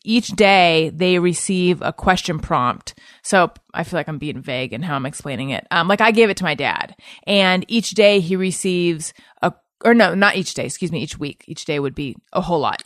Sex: female